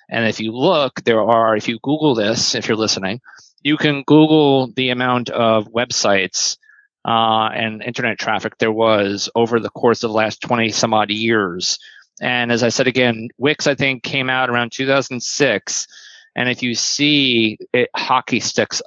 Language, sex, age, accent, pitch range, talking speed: English, male, 30-49, American, 115-135 Hz, 175 wpm